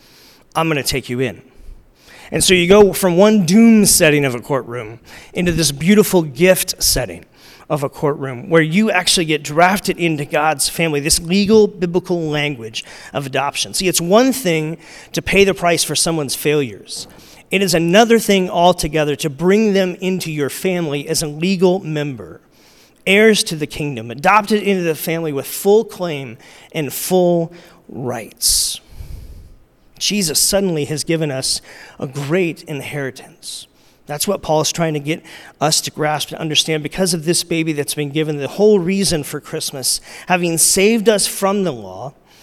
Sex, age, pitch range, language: male, 40-59, 150-195 Hz, English